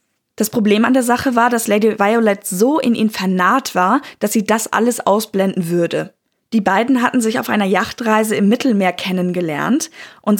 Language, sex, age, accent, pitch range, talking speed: German, female, 10-29, German, 200-240 Hz, 180 wpm